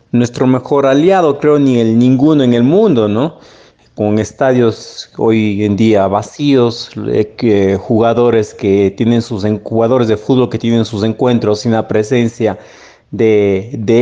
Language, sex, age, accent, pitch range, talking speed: Spanish, male, 40-59, Mexican, 105-130 Hz, 145 wpm